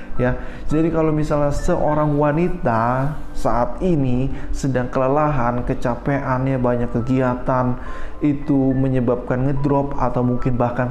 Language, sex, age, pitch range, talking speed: Indonesian, male, 20-39, 120-150 Hz, 105 wpm